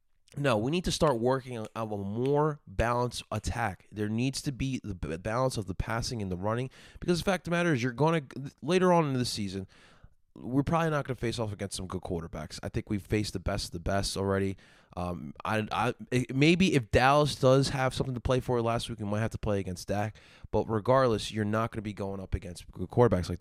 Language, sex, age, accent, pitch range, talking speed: English, male, 20-39, American, 100-130 Hz, 240 wpm